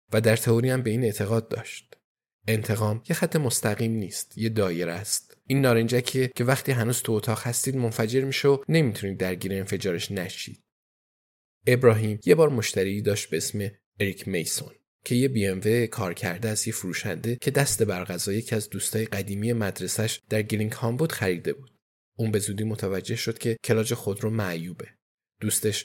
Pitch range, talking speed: 100-120 Hz, 165 wpm